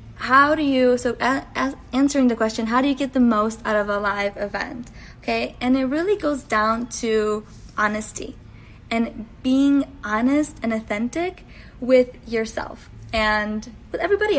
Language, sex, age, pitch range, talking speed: English, female, 20-39, 215-265 Hz, 150 wpm